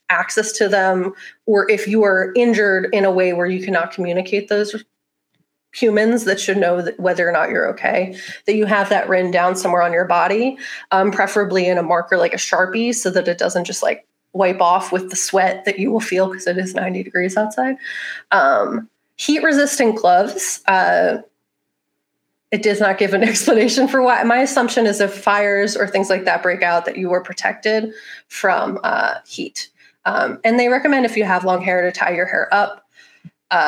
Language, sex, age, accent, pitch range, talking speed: English, female, 20-39, American, 185-215 Hz, 195 wpm